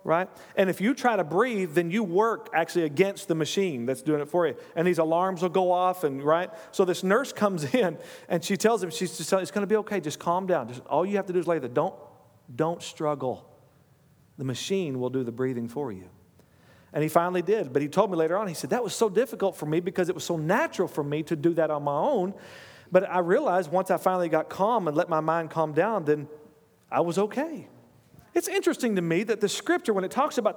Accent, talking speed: American, 250 wpm